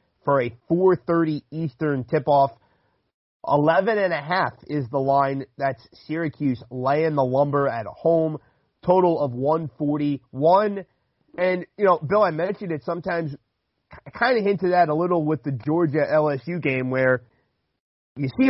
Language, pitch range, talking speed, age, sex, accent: English, 135-170 Hz, 135 wpm, 30-49, male, American